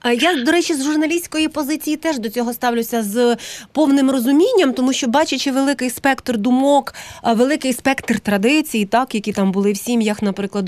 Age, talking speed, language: 30-49, 170 wpm, Ukrainian